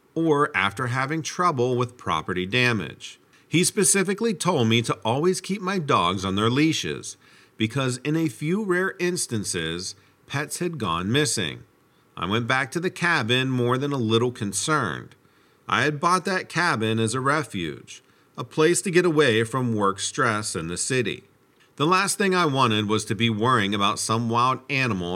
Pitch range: 100-155 Hz